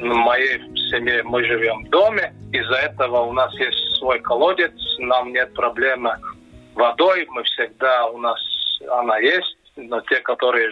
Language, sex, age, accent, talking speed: Russian, male, 40-59, native, 155 wpm